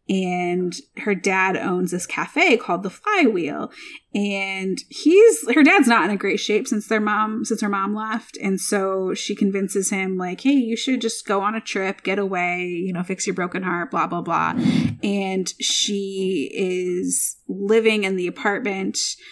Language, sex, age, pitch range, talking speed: English, female, 20-39, 185-245 Hz, 175 wpm